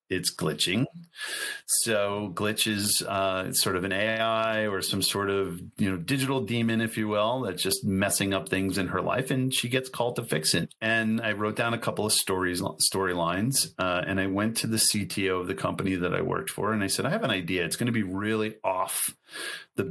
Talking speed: 220 wpm